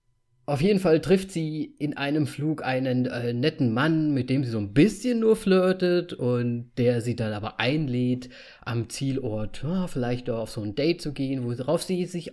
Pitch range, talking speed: 125-155 Hz, 185 wpm